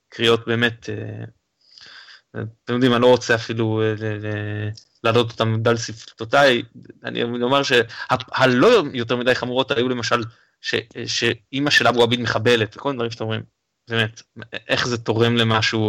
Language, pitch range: Hebrew, 110-130 Hz